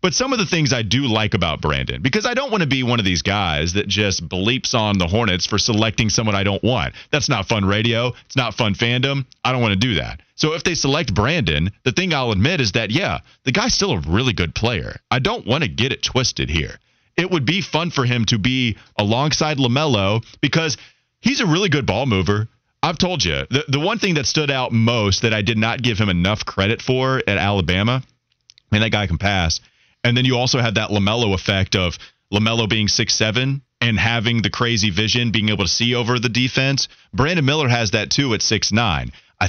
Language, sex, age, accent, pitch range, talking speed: English, male, 30-49, American, 100-130 Hz, 230 wpm